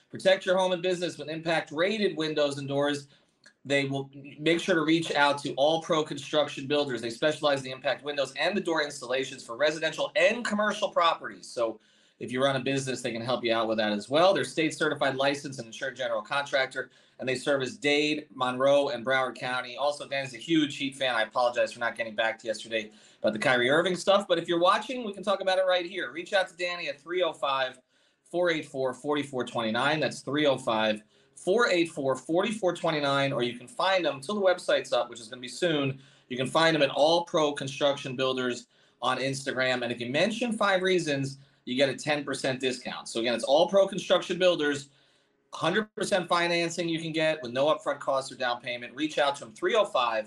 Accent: American